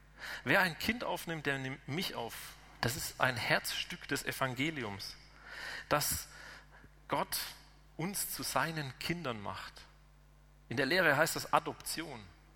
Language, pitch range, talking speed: German, 130-165 Hz, 130 wpm